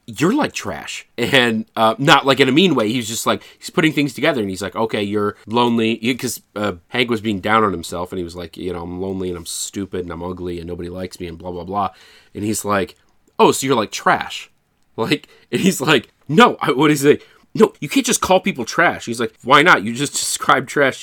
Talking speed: 250 wpm